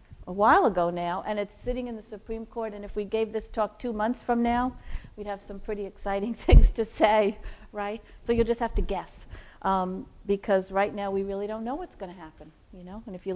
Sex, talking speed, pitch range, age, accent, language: female, 235 wpm, 195-240 Hz, 50-69, American, English